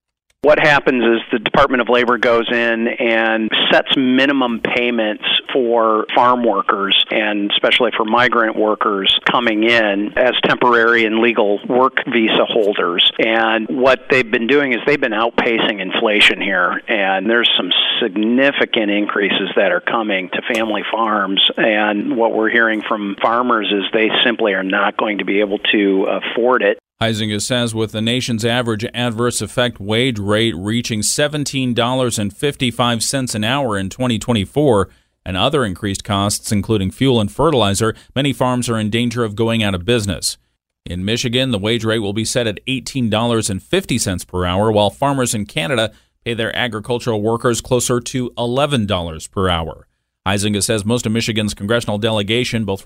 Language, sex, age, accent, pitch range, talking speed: English, male, 40-59, American, 105-120 Hz, 155 wpm